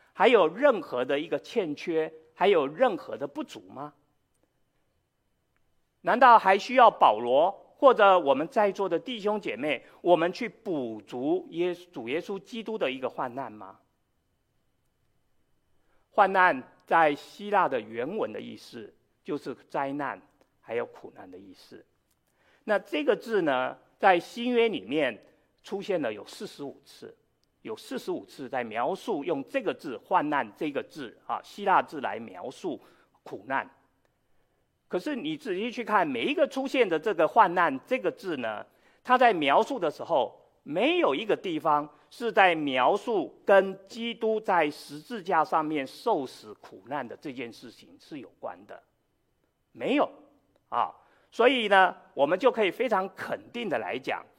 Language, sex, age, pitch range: Chinese, male, 50-69, 160-245 Hz